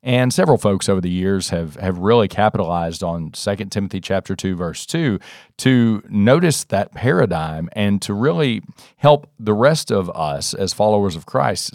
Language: English